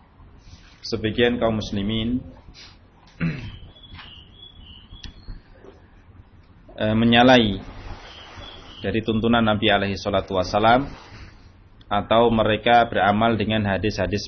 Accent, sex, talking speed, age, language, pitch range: native, male, 65 wpm, 20-39, Indonesian, 95-110 Hz